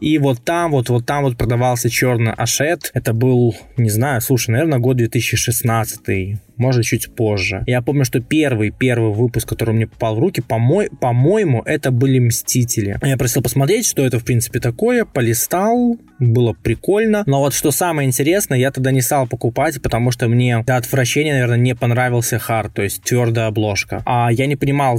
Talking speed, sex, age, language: 180 wpm, male, 20-39, Russian